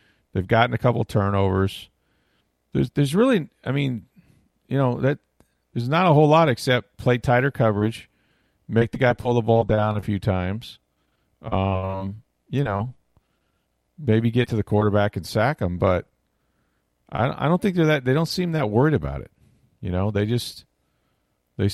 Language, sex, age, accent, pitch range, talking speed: English, male, 40-59, American, 95-120 Hz, 170 wpm